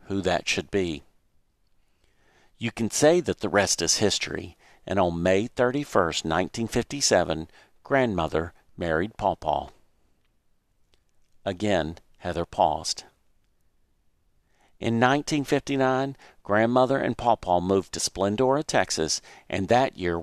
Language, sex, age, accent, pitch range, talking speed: English, male, 50-69, American, 85-115 Hz, 105 wpm